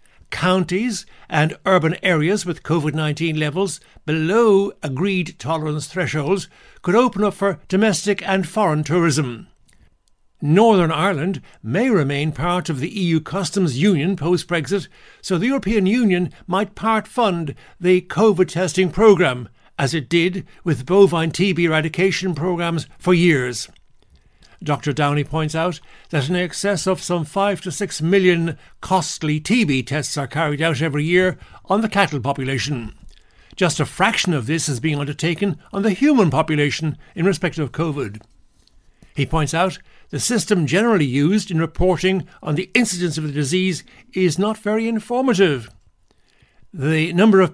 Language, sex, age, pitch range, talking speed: English, male, 60-79, 150-195 Hz, 145 wpm